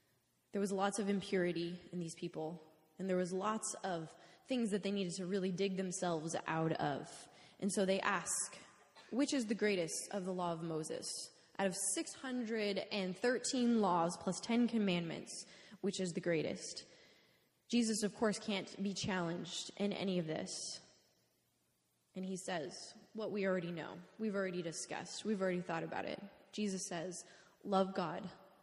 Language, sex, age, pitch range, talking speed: English, female, 20-39, 175-210 Hz, 160 wpm